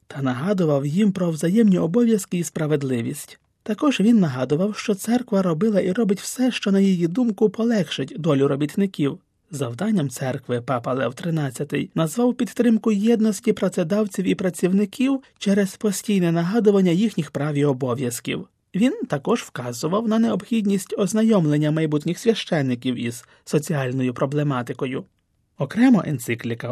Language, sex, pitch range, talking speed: Ukrainian, male, 145-210 Hz, 125 wpm